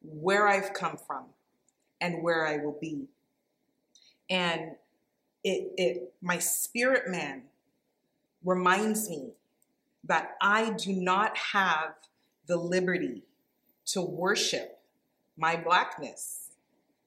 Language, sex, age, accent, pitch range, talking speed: English, female, 30-49, American, 175-220 Hz, 100 wpm